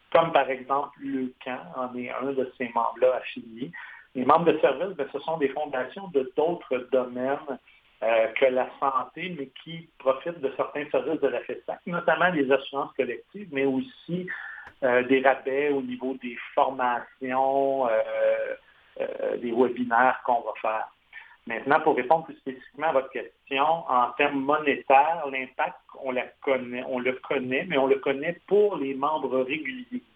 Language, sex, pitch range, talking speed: French, male, 130-150 Hz, 165 wpm